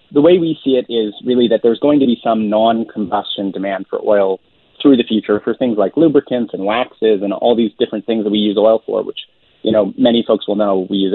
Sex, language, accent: male, English, American